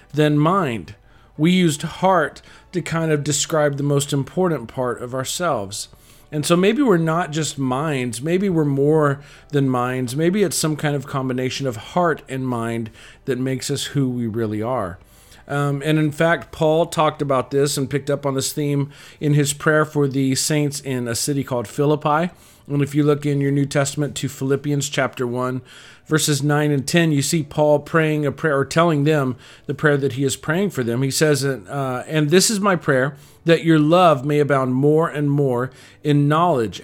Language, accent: English, American